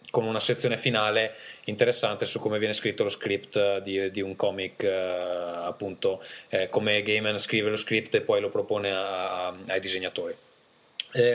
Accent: native